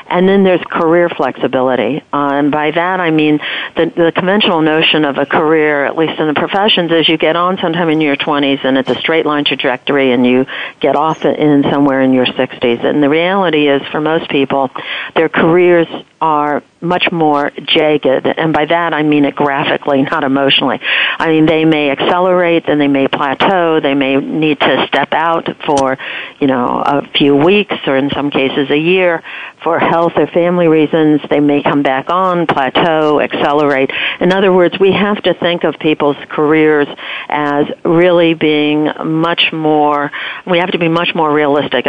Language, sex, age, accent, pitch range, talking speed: English, female, 50-69, American, 140-165 Hz, 185 wpm